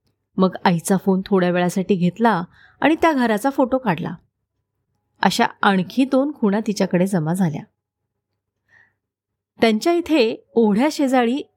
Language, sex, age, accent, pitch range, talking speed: Marathi, female, 30-49, native, 175-265 Hz, 115 wpm